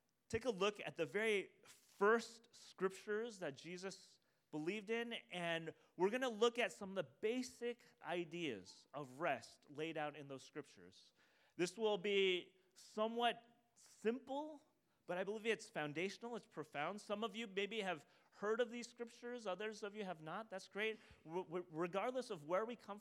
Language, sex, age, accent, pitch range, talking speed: English, male, 30-49, American, 155-220 Hz, 165 wpm